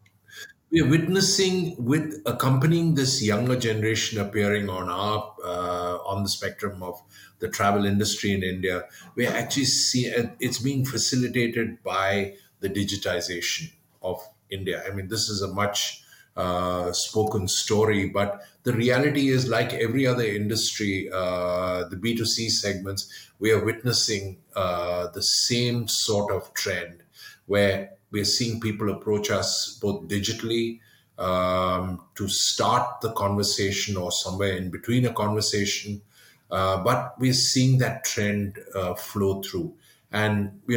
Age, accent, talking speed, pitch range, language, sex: 50-69, Indian, 135 wpm, 100-120 Hz, English, male